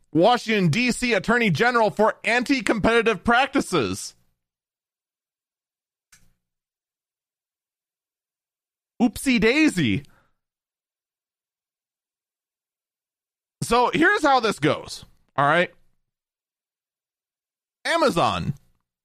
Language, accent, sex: English, American, male